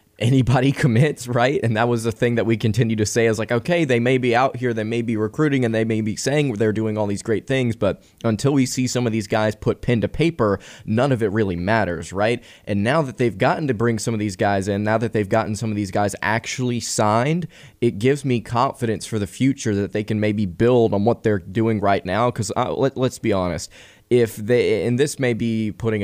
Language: English